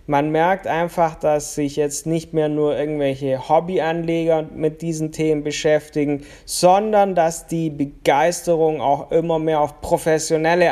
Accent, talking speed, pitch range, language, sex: German, 135 wpm, 140-165 Hz, German, male